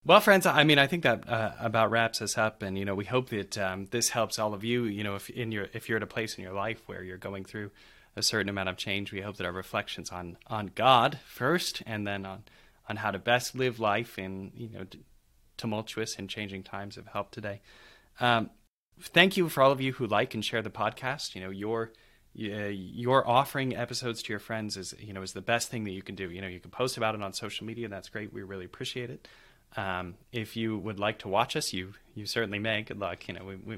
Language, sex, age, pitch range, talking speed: English, male, 20-39, 100-120 Hz, 255 wpm